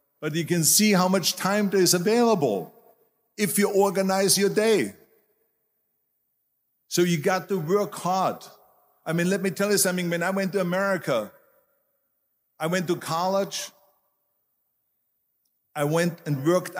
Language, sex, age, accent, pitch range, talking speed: English, male, 50-69, German, 165-195 Hz, 145 wpm